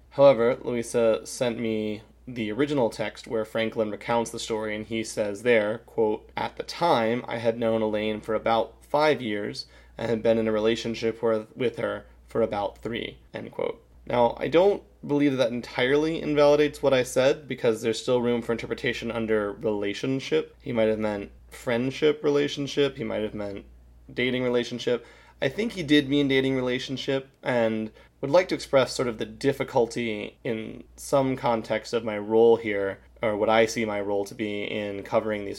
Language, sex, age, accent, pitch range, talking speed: English, male, 20-39, American, 105-125 Hz, 180 wpm